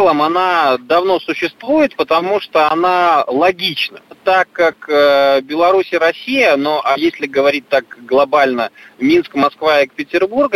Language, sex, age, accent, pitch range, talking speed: Russian, male, 20-39, native, 145-210 Hz, 125 wpm